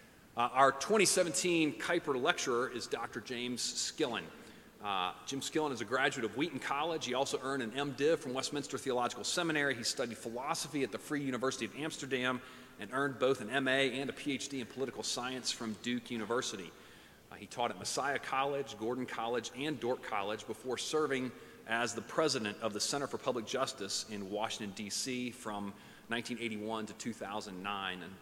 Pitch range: 115-140 Hz